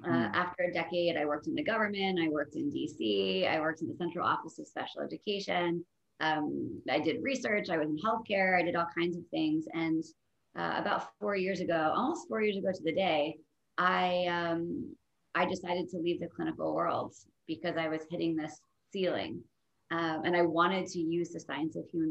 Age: 30-49